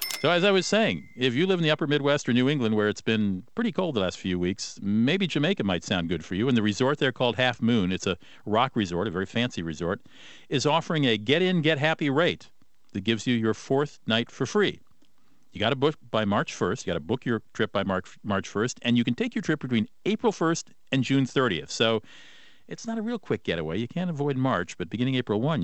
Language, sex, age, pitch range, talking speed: English, male, 50-69, 95-135 Hz, 240 wpm